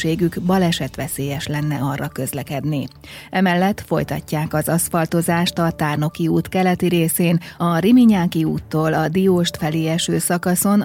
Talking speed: 120 wpm